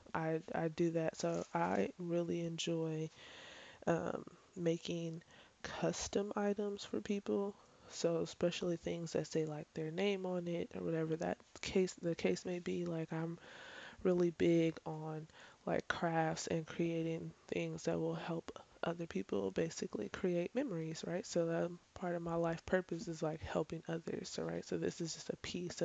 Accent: American